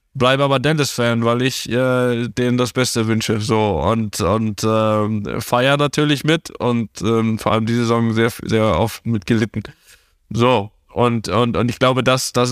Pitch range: 110-125 Hz